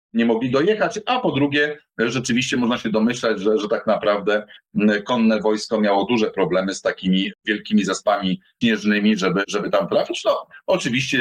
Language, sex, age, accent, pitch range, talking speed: Polish, male, 40-59, native, 105-155 Hz, 160 wpm